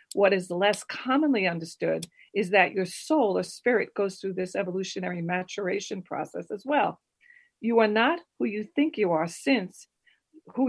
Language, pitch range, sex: English, 185-240 Hz, female